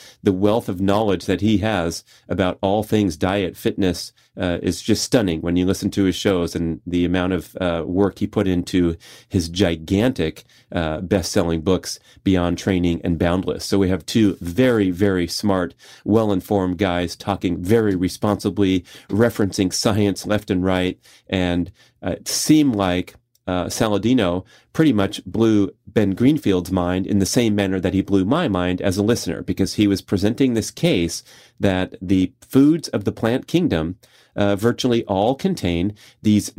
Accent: American